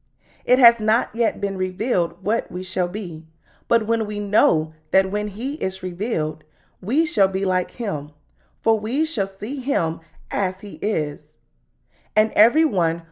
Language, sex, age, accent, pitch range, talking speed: English, female, 20-39, American, 165-240 Hz, 155 wpm